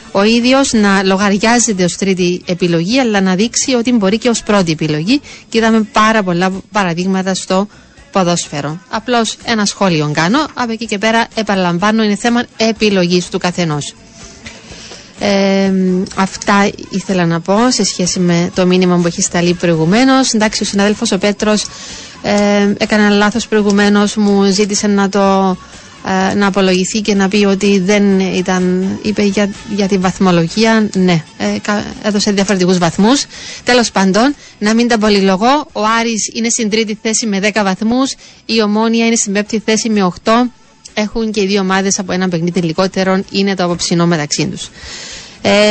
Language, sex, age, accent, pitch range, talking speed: Greek, female, 30-49, native, 190-225 Hz, 155 wpm